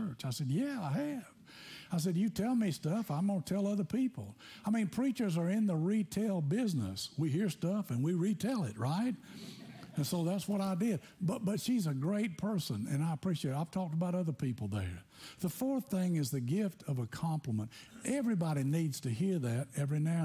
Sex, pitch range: male, 130-180 Hz